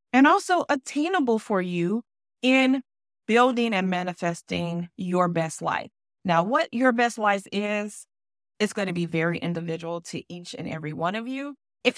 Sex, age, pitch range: female, 30-49, 180-240 Hz